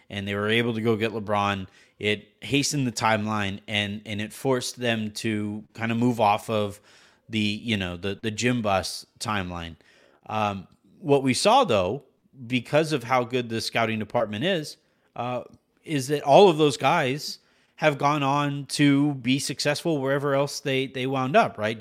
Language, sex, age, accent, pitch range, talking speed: English, male, 30-49, American, 110-140 Hz, 175 wpm